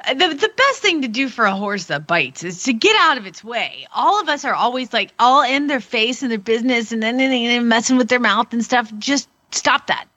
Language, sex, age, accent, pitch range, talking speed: English, female, 40-59, American, 195-255 Hz, 260 wpm